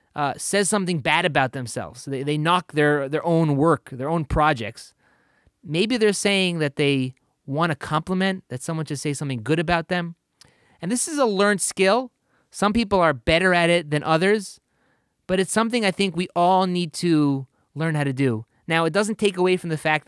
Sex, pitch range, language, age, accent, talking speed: male, 135-185 Hz, English, 30-49, American, 200 wpm